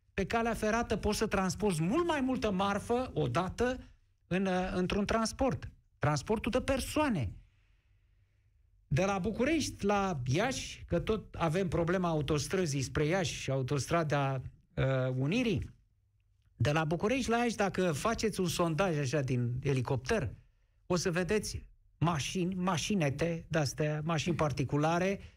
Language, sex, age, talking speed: Romanian, male, 50-69, 120 wpm